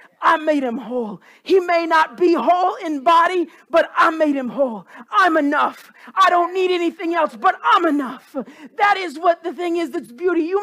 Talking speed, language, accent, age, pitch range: 200 wpm, English, American, 40-59, 250-340 Hz